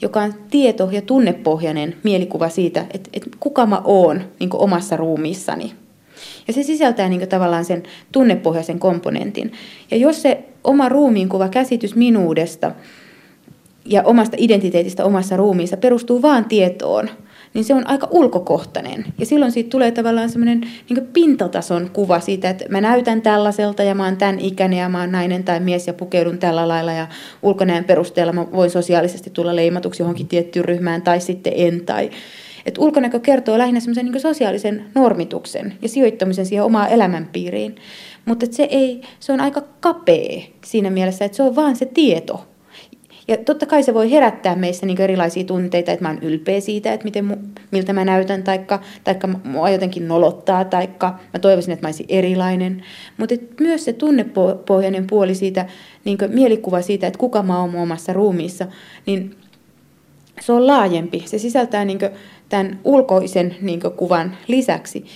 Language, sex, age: Finnish, female, 30-49